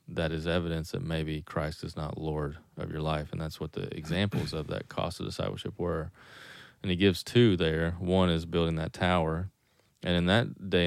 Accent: American